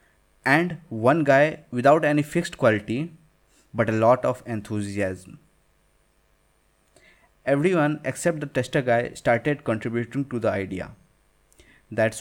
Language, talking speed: English, 115 wpm